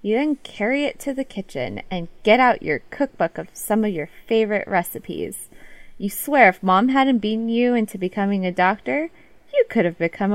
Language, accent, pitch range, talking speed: English, American, 180-255 Hz, 190 wpm